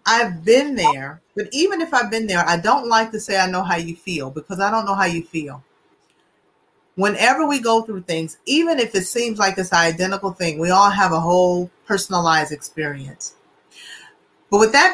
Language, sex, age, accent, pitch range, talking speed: English, female, 30-49, American, 185-240 Hz, 195 wpm